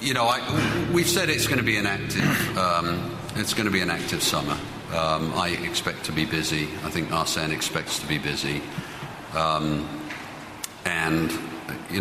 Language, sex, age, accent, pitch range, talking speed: English, male, 50-69, British, 80-115 Hz, 175 wpm